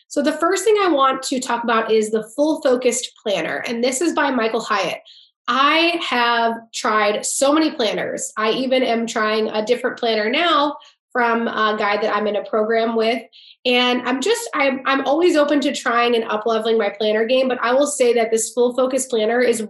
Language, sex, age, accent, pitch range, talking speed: English, female, 20-39, American, 225-270 Hz, 205 wpm